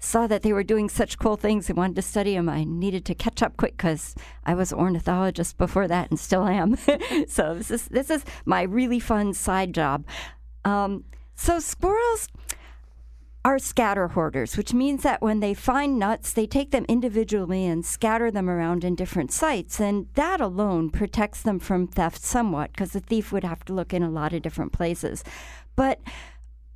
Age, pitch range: 50-69, 180-255 Hz